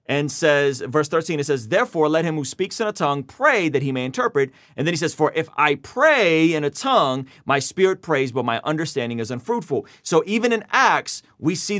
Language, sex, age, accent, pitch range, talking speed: English, male, 30-49, American, 135-185 Hz, 225 wpm